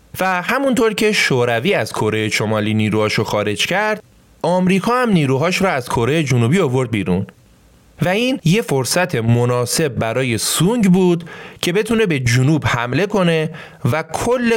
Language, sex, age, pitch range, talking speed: Persian, male, 30-49, 120-185 Hz, 145 wpm